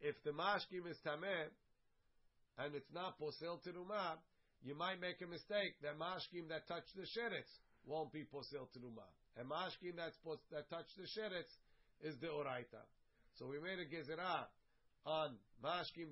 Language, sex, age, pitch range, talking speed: English, male, 50-69, 140-170 Hz, 165 wpm